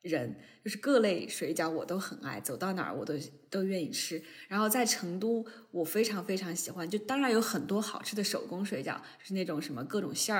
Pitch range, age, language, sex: 170-230 Hz, 20-39, Chinese, female